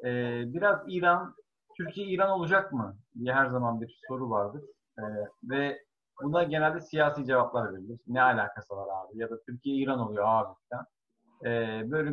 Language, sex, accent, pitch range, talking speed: Turkish, male, native, 120-165 Hz, 160 wpm